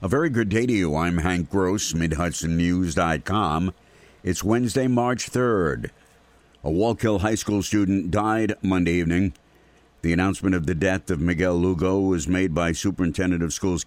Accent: American